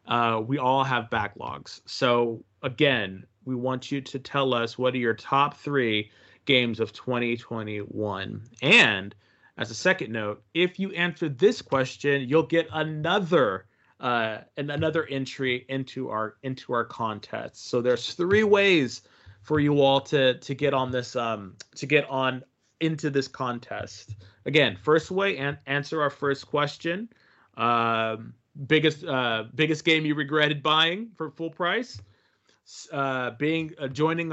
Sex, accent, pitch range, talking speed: male, American, 125-150 Hz, 150 wpm